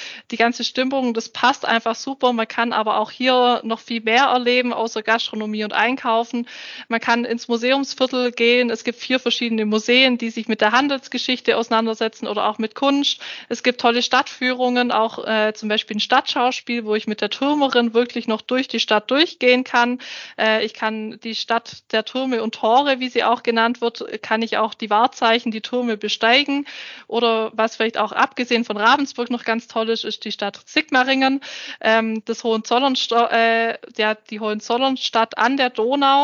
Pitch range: 225-250 Hz